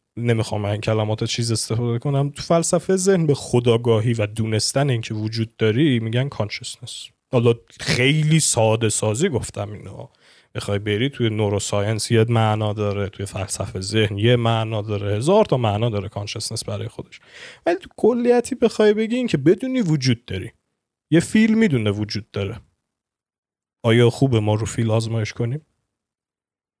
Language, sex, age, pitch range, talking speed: Persian, male, 30-49, 110-145 Hz, 145 wpm